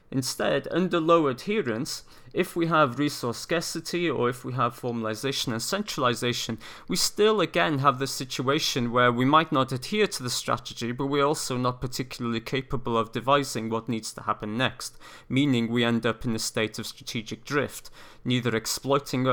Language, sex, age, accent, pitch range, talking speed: English, male, 30-49, British, 115-150 Hz, 170 wpm